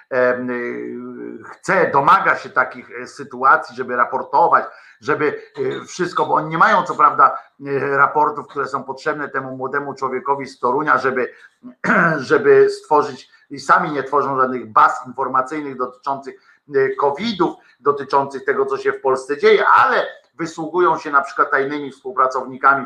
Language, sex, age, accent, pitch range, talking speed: Polish, male, 50-69, native, 130-180 Hz, 130 wpm